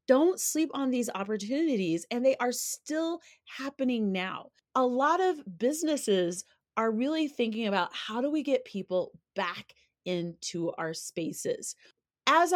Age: 30-49